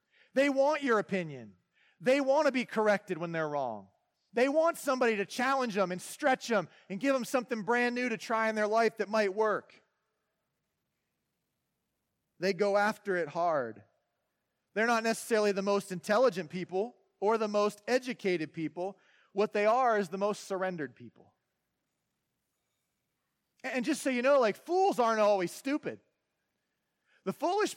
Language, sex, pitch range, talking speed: English, male, 160-235 Hz, 155 wpm